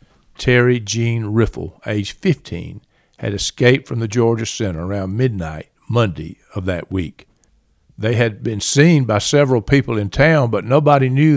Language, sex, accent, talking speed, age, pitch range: English, male, American, 155 wpm, 50-69, 100-125 Hz